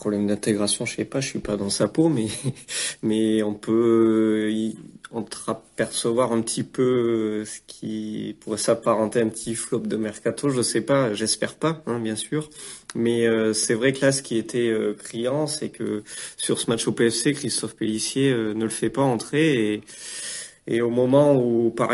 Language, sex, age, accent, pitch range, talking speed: French, male, 30-49, French, 110-125 Hz, 185 wpm